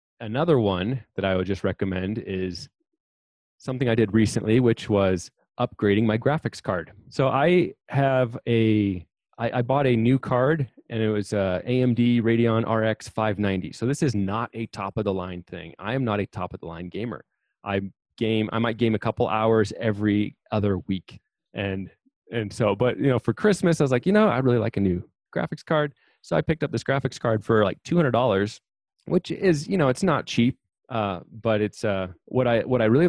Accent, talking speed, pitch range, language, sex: American, 205 wpm, 100-125 Hz, English, male